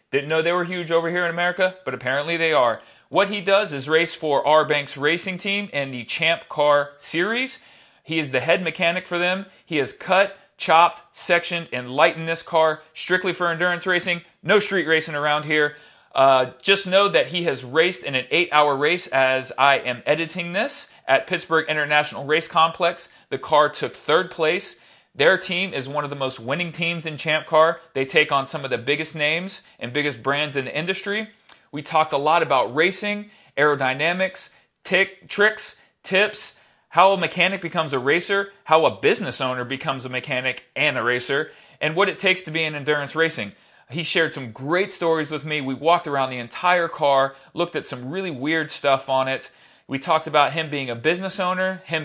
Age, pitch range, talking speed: 40-59, 140-180 Hz, 195 wpm